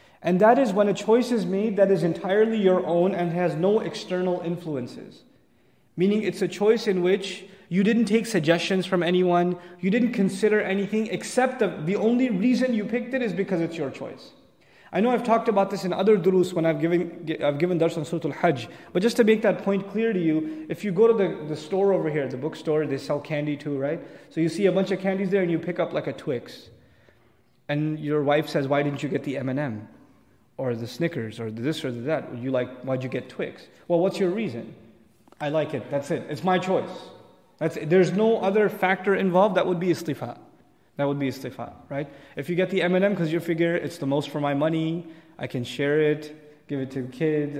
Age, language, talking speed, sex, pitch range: 20-39, English, 225 wpm, male, 145-195 Hz